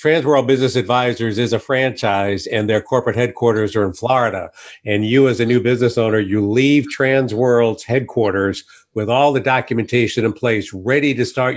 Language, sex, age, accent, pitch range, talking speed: English, male, 50-69, American, 110-130 Hz, 170 wpm